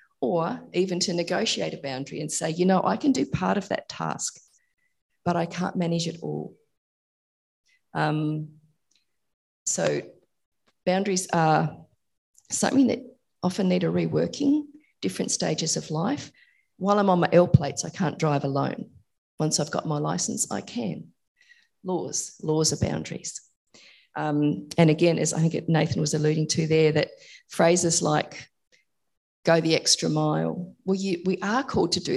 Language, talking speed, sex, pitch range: English, 155 wpm, female, 150-190 Hz